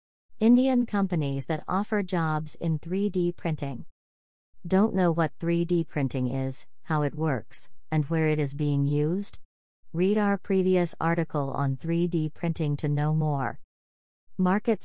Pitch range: 145-170 Hz